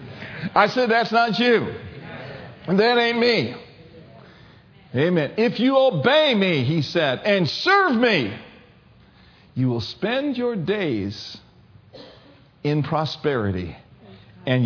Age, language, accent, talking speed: 50-69, English, American, 110 wpm